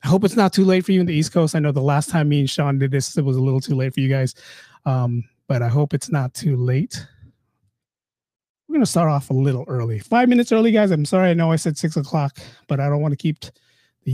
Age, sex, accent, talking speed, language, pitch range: 30-49, male, American, 280 wpm, English, 140-200 Hz